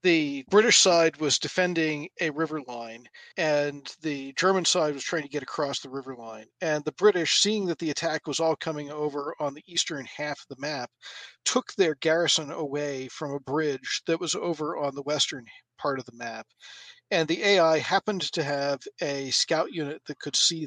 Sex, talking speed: male, 195 wpm